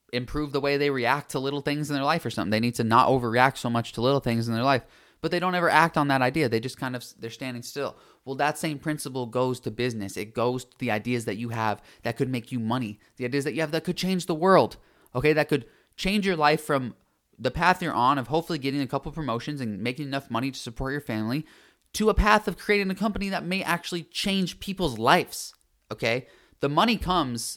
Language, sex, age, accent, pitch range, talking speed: English, male, 20-39, American, 115-150 Hz, 250 wpm